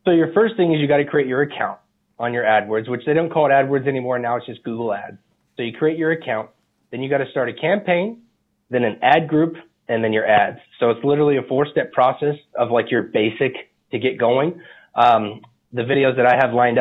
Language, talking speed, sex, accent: English, 230 wpm, male, American